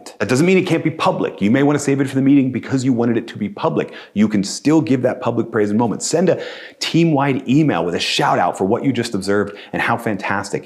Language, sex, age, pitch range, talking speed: English, male, 30-49, 105-145 Hz, 270 wpm